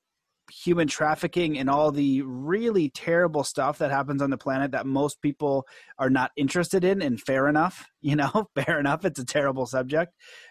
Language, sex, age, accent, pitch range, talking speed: English, male, 30-49, American, 135-160 Hz, 175 wpm